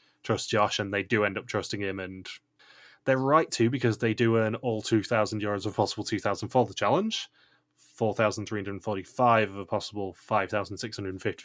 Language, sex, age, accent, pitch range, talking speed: English, male, 20-39, British, 105-120 Hz, 160 wpm